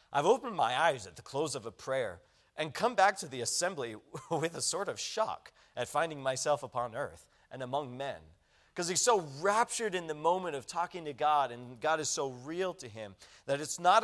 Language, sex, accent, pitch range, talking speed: English, male, American, 120-160 Hz, 215 wpm